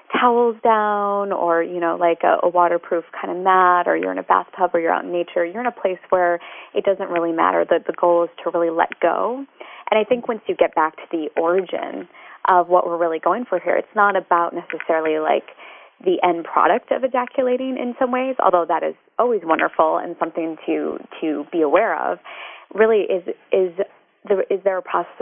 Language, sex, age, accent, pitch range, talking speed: English, female, 20-39, American, 170-230 Hz, 210 wpm